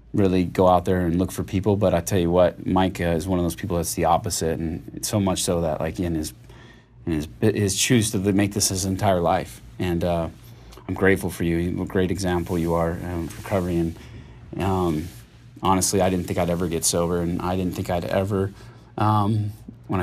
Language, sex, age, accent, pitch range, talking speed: English, male, 30-49, American, 90-110 Hz, 220 wpm